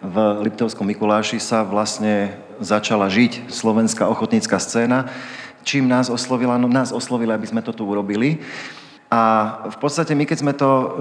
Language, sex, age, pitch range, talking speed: Slovak, male, 40-59, 105-125 Hz, 155 wpm